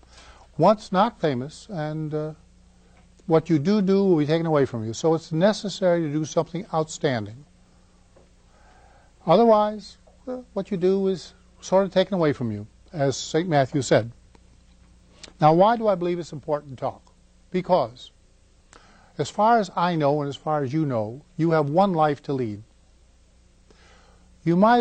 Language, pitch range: English, 120-180 Hz